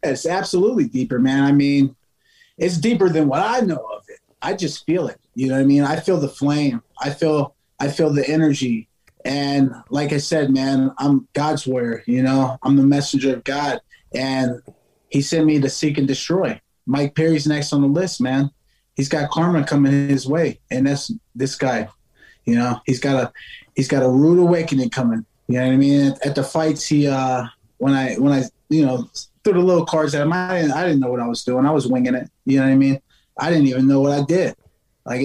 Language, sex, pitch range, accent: English, male, 130-150 Hz, American